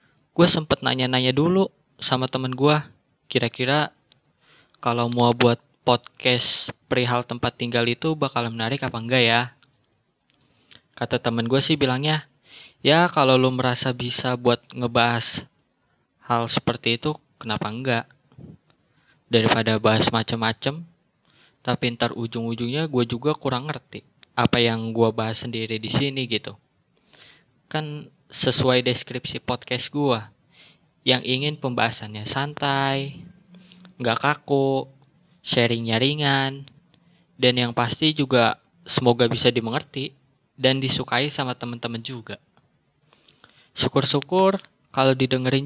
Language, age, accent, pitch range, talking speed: Indonesian, 20-39, native, 120-145 Hz, 110 wpm